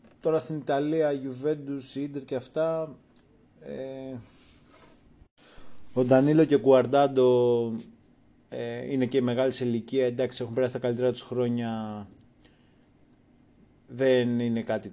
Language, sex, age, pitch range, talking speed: Greek, male, 30-49, 120-140 Hz, 110 wpm